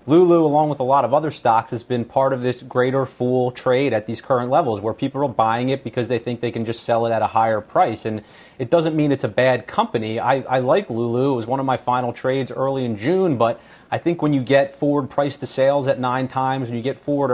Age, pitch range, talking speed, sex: 30-49, 115-140 Hz, 265 wpm, male